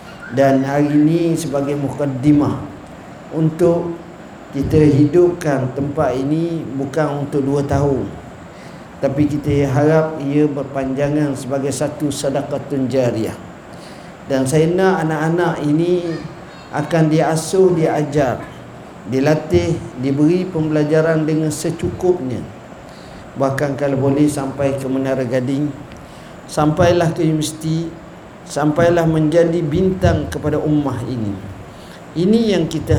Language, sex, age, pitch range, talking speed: Malay, male, 50-69, 140-165 Hz, 100 wpm